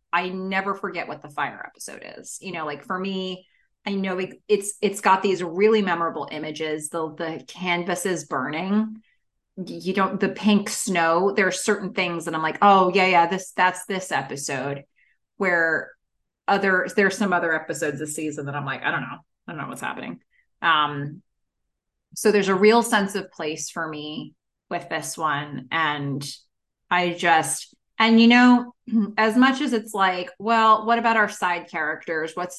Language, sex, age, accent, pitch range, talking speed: English, female, 30-49, American, 160-210 Hz, 175 wpm